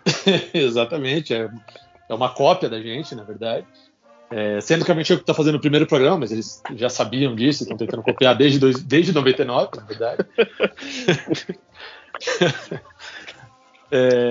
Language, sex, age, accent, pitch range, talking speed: Portuguese, male, 40-59, Brazilian, 125-185 Hz, 145 wpm